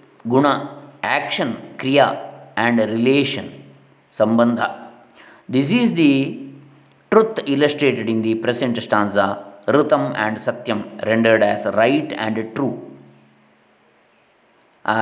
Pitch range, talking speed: 115-155 Hz, 90 wpm